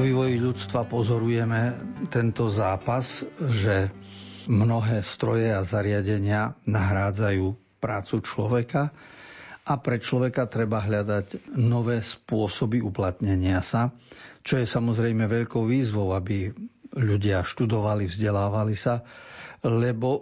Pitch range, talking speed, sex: 105-125 Hz, 100 wpm, male